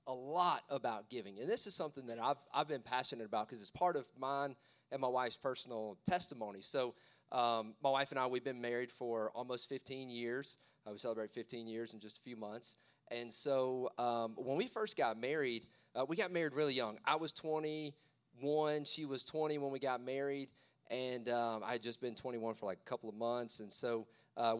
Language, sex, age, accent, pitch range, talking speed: English, male, 30-49, American, 120-150 Hz, 210 wpm